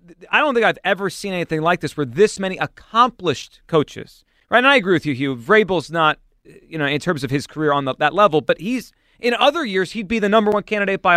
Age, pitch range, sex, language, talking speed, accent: 40-59, 155-215 Hz, male, English, 245 wpm, American